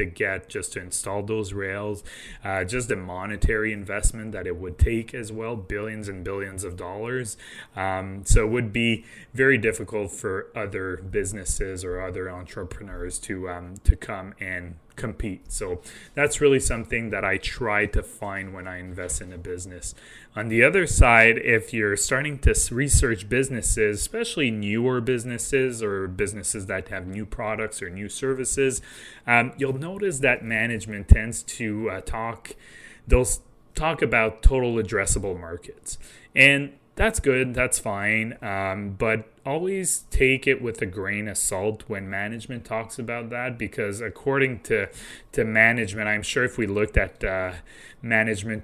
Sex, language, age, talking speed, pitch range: male, English, 20-39, 155 wpm, 95-120 Hz